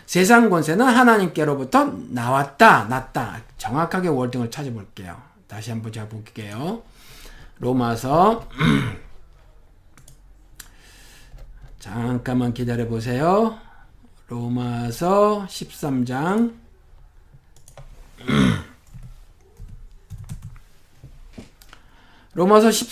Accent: native